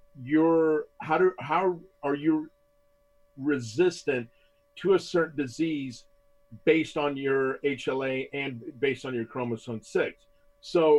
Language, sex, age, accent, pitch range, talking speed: English, male, 50-69, American, 140-175 Hz, 120 wpm